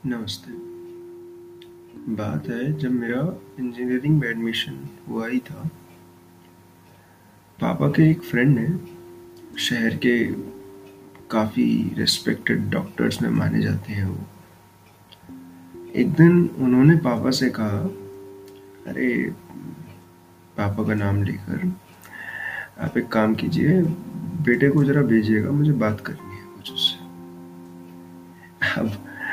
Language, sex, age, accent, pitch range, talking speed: Hindi, male, 20-39, native, 95-135 Hz, 100 wpm